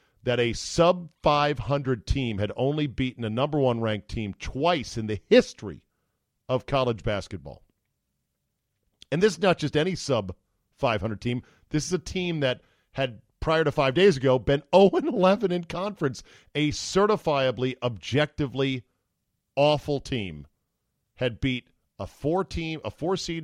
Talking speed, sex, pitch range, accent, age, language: 135 wpm, male, 110-155 Hz, American, 40-59, English